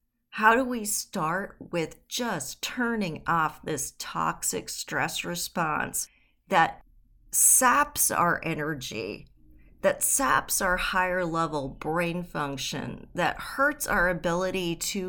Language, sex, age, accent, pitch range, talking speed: English, female, 40-59, American, 155-215 Hz, 105 wpm